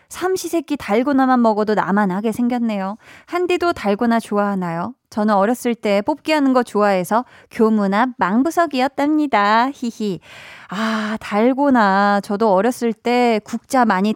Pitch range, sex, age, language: 195-270 Hz, female, 20-39, Korean